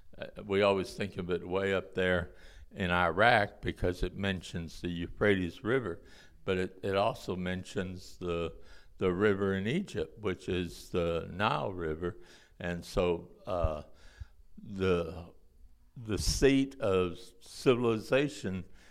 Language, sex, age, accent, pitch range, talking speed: English, male, 60-79, American, 85-100 Hz, 125 wpm